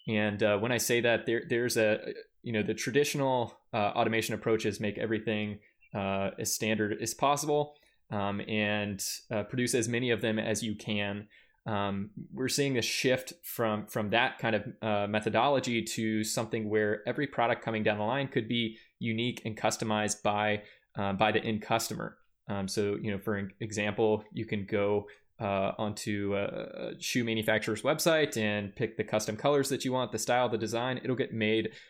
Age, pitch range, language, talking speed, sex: 20-39, 105-120 Hz, English, 180 wpm, male